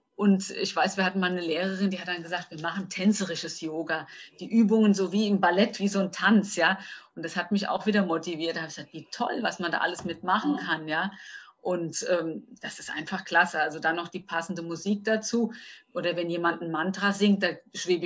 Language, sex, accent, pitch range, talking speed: German, female, German, 180-225 Hz, 225 wpm